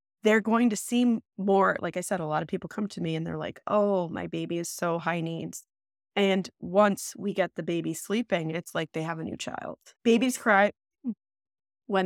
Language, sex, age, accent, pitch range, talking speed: English, female, 20-39, American, 165-210 Hz, 210 wpm